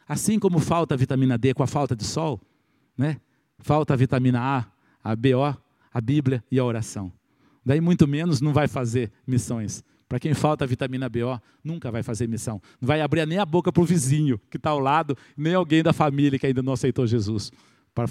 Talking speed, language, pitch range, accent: 210 wpm, Portuguese, 125-155 Hz, Brazilian